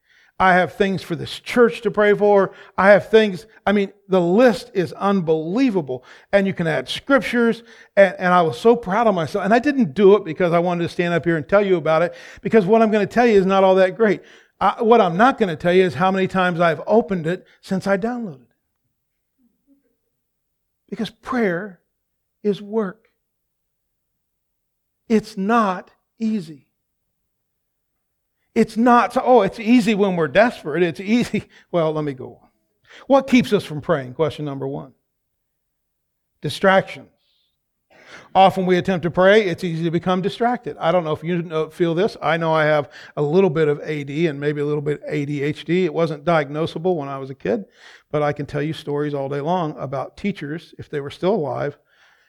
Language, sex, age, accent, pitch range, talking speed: English, male, 50-69, American, 155-210 Hz, 190 wpm